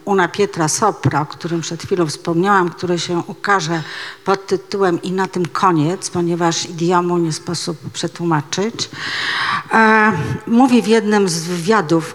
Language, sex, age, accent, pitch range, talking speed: Polish, female, 50-69, native, 165-205 Hz, 135 wpm